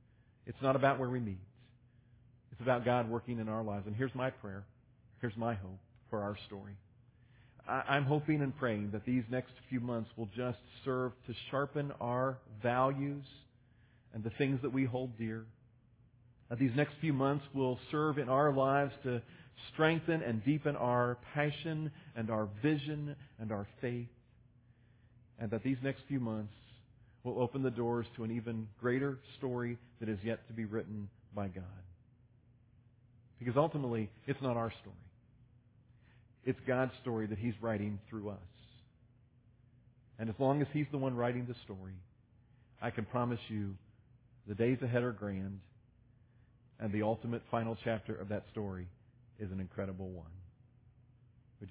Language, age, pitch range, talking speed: English, 40-59, 115-125 Hz, 160 wpm